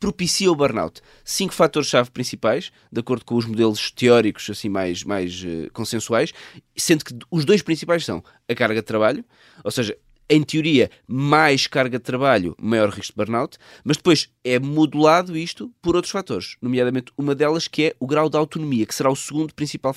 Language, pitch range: English, 120-165 Hz